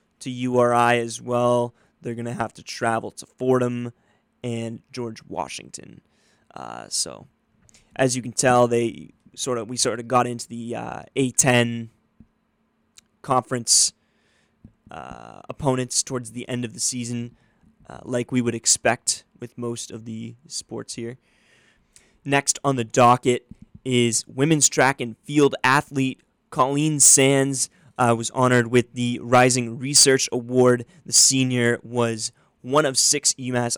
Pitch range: 120-130 Hz